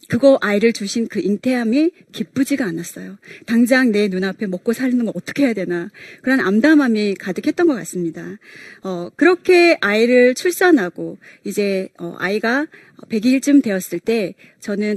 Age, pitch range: 40-59, 190-275 Hz